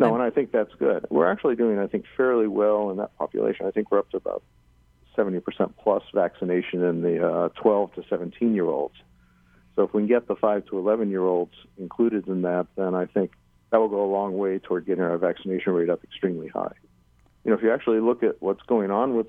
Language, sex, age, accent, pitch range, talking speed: English, male, 50-69, American, 85-105 Hz, 235 wpm